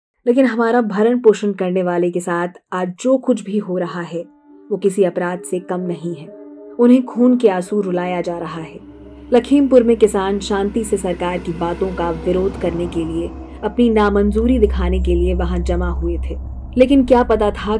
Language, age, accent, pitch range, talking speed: Hindi, 20-39, native, 180-235 Hz, 190 wpm